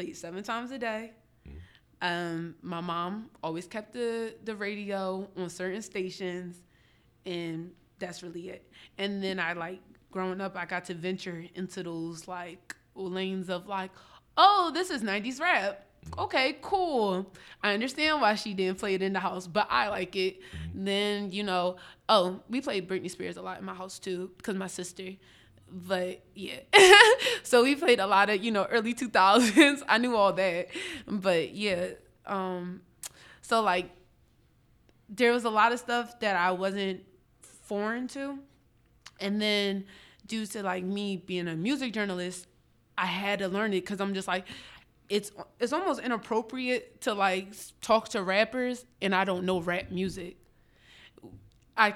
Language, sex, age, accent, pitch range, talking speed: English, female, 20-39, American, 180-225 Hz, 165 wpm